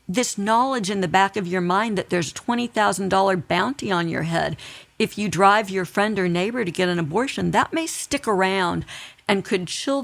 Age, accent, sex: 50-69, American, female